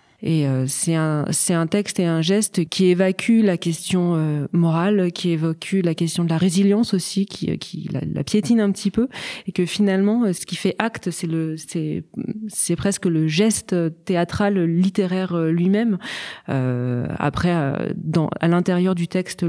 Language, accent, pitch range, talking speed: French, French, 160-190 Hz, 165 wpm